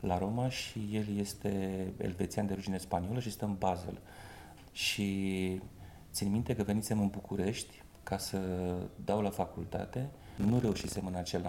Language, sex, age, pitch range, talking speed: Romanian, male, 30-49, 95-115 Hz, 150 wpm